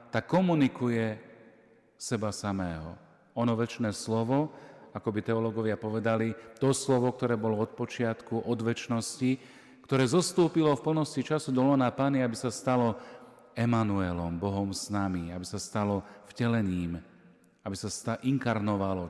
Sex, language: male, Slovak